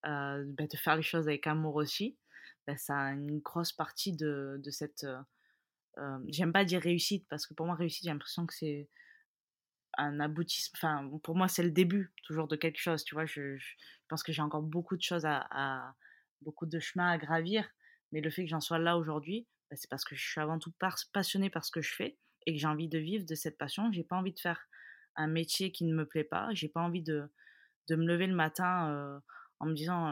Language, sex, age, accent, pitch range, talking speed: French, female, 20-39, French, 155-180 Hz, 235 wpm